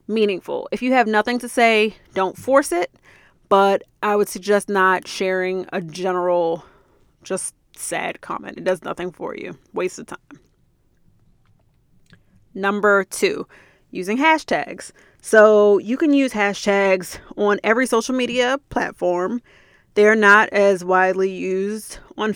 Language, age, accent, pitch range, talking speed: English, 30-49, American, 185-215 Hz, 130 wpm